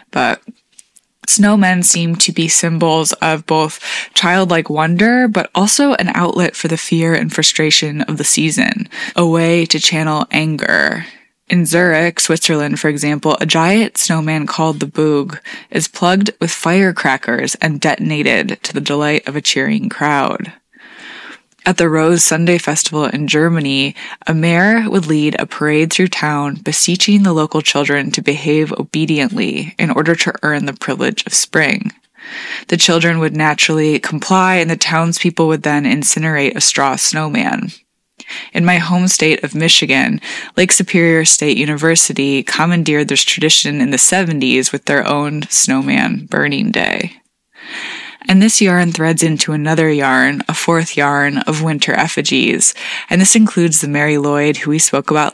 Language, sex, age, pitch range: English, female, 20-39, 150-185 Hz